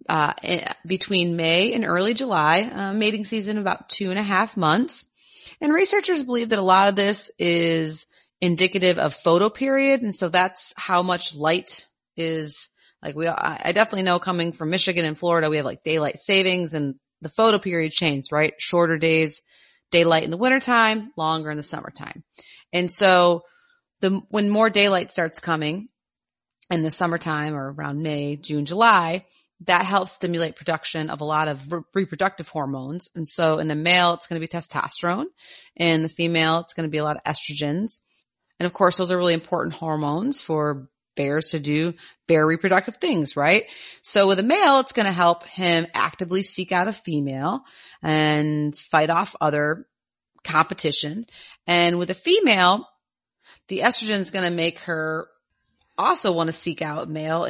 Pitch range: 155-195 Hz